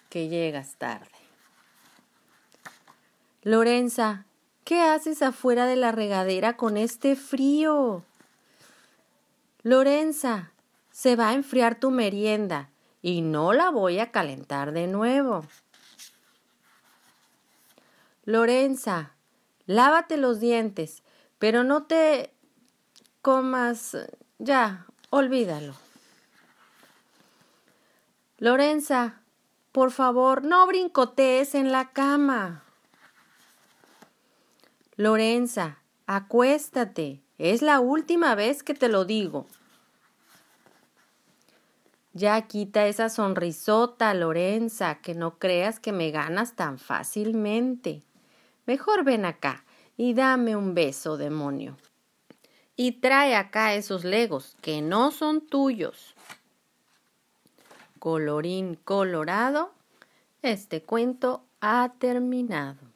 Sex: female